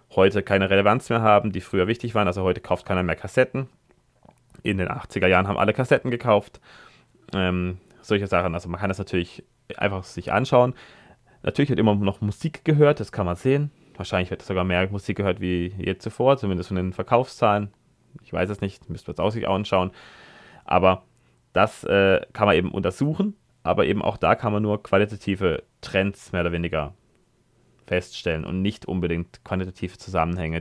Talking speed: 180 wpm